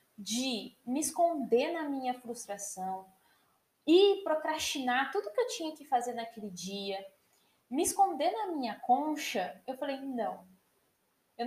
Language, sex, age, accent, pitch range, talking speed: Portuguese, female, 10-29, Brazilian, 235-330 Hz, 130 wpm